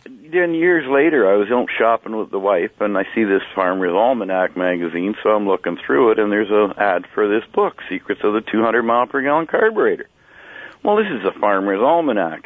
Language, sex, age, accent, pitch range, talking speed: English, male, 60-79, American, 105-125 Hz, 205 wpm